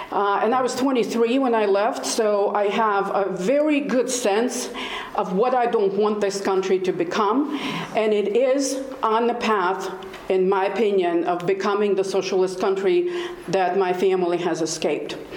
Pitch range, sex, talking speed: 190-230 Hz, female, 170 wpm